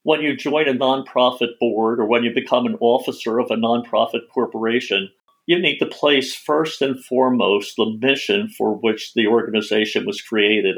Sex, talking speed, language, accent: male, 175 wpm, English, American